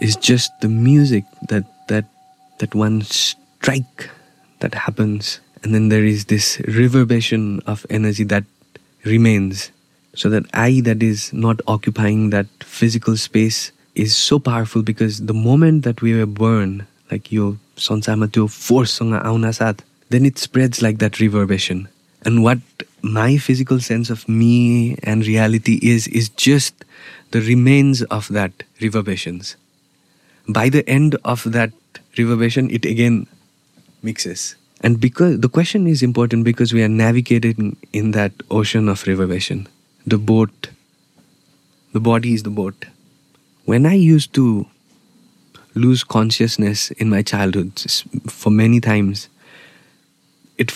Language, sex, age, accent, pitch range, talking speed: English, male, 20-39, Indian, 105-120 Hz, 135 wpm